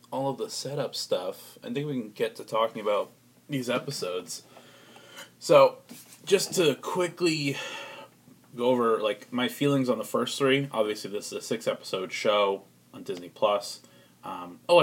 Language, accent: English, American